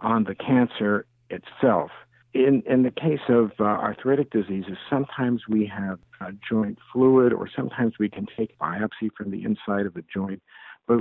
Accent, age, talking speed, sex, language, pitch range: American, 60-79, 165 wpm, male, English, 100-125 Hz